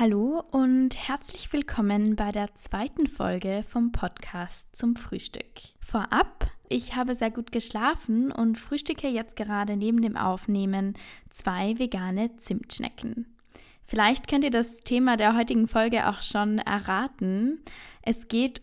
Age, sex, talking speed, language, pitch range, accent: 10-29, female, 130 wpm, German, 205-245 Hz, German